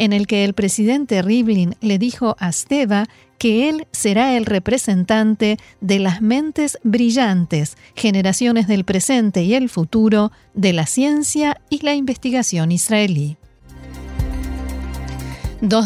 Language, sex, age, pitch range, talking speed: Spanish, female, 40-59, 195-240 Hz, 125 wpm